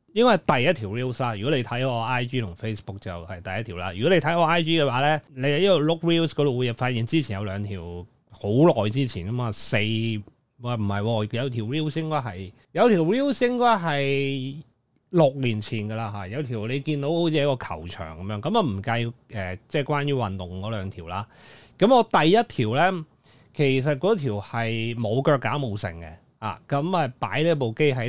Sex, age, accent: male, 30-49, native